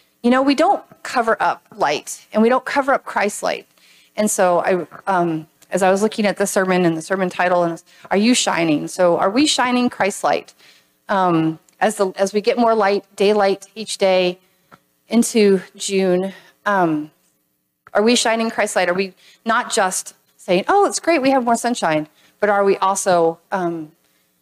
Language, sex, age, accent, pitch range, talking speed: English, female, 40-59, American, 175-220 Hz, 185 wpm